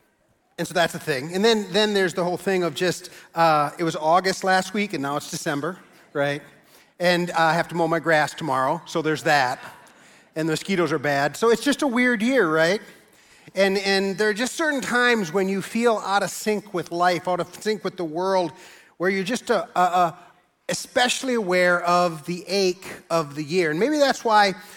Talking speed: 215 wpm